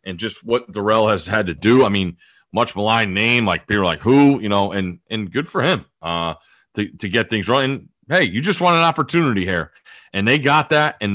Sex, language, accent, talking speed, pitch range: male, English, American, 230 wpm, 95-120 Hz